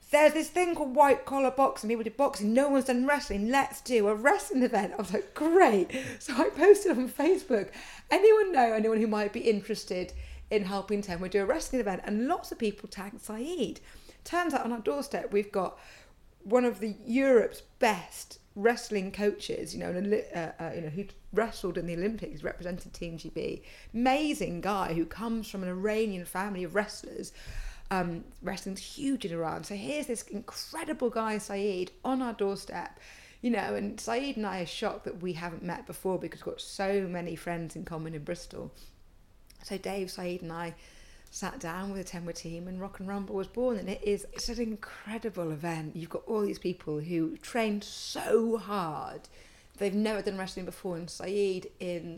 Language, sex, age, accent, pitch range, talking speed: English, female, 40-59, British, 180-240 Hz, 190 wpm